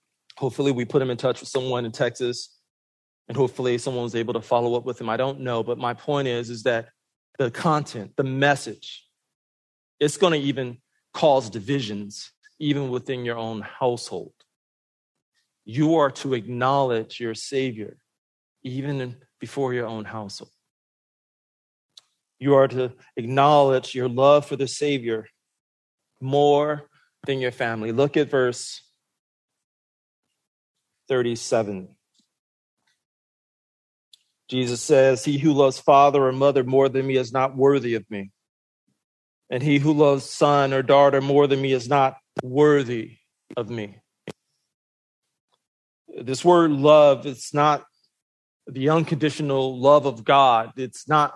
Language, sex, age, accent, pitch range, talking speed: English, male, 40-59, American, 120-140 Hz, 135 wpm